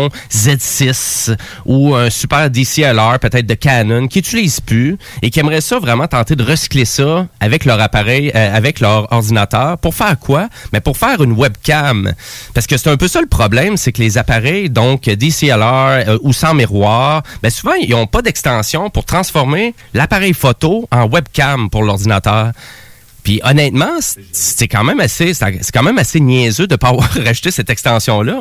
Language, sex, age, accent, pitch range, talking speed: French, male, 30-49, Canadian, 115-155 Hz, 185 wpm